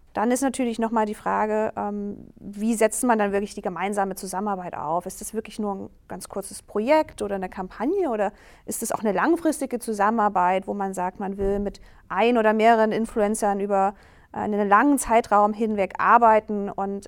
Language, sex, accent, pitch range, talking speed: German, female, German, 195-225 Hz, 175 wpm